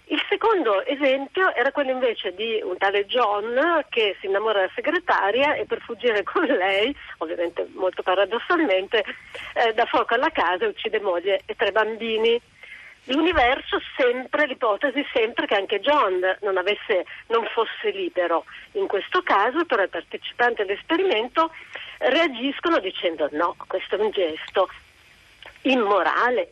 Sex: female